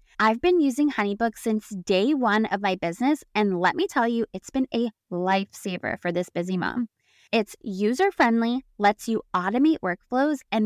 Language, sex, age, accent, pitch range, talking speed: English, female, 20-39, American, 205-275 Hz, 170 wpm